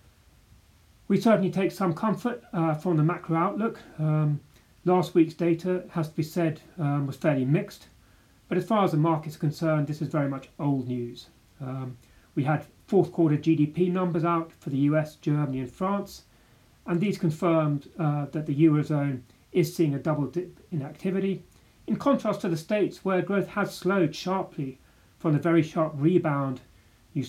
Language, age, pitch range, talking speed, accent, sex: English, 30-49, 140-180 Hz, 175 wpm, British, male